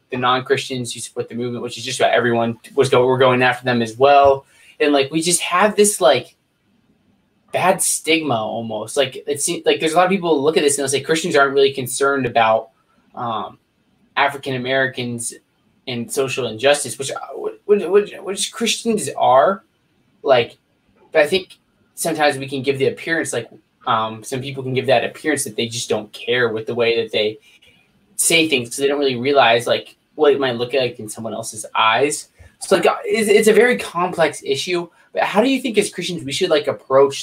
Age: 20-39